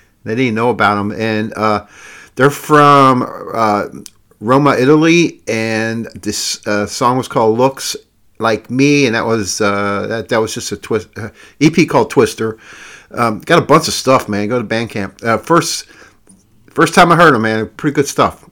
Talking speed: 185 wpm